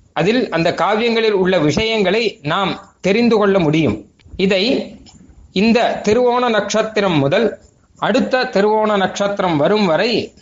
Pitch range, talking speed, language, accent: 185-225 Hz, 110 wpm, Tamil, native